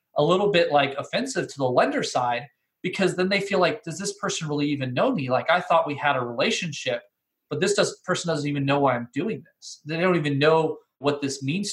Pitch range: 140-170 Hz